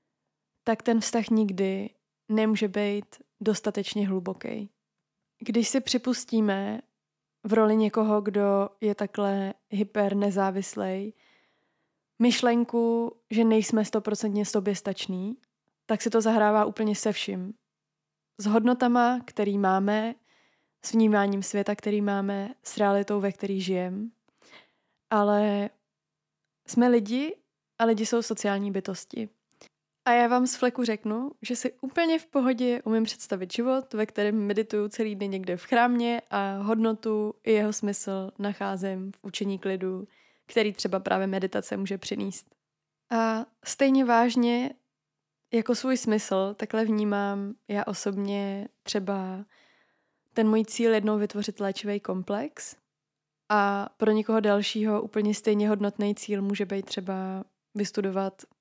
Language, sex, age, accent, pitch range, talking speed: Czech, female, 20-39, native, 200-225 Hz, 125 wpm